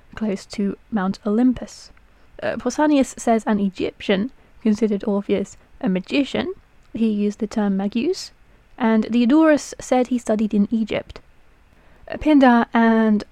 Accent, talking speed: British, 120 wpm